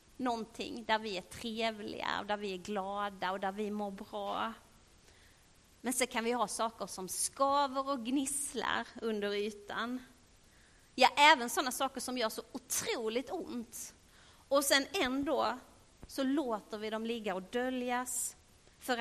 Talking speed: 150 wpm